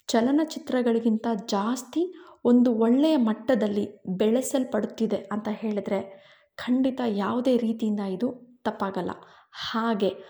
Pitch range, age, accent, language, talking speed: 205-250 Hz, 20-39, native, Kannada, 80 wpm